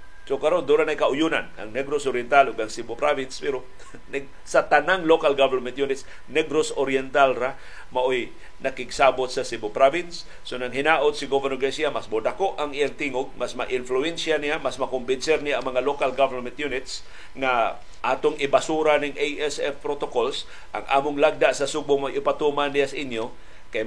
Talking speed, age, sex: 160 wpm, 50-69, male